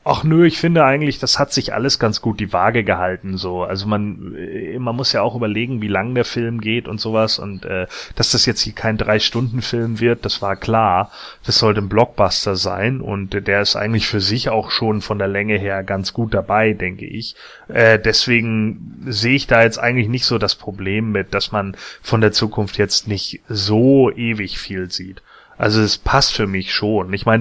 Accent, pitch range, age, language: German, 100-125 Hz, 30-49, German